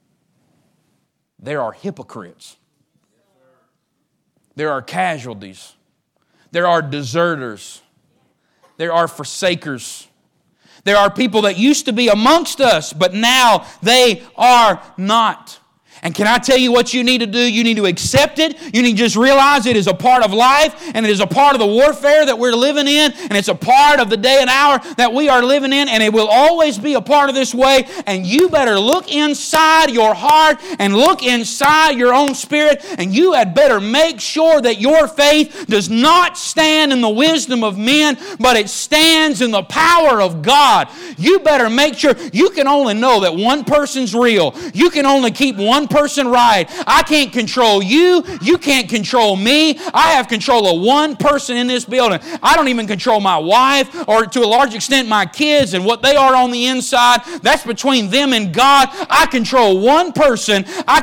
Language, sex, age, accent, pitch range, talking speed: English, male, 40-59, American, 220-295 Hz, 190 wpm